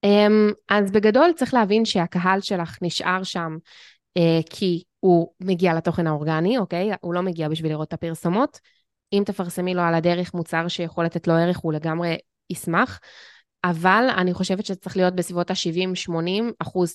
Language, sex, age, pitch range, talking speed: Hebrew, female, 20-39, 170-205 Hz, 165 wpm